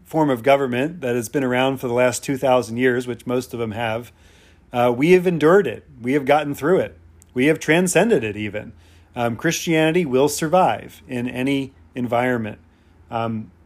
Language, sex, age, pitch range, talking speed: English, male, 40-59, 110-140 Hz, 175 wpm